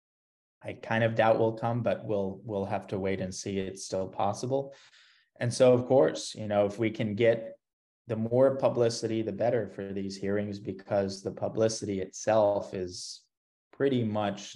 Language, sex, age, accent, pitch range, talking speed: English, male, 20-39, American, 100-110 Hz, 175 wpm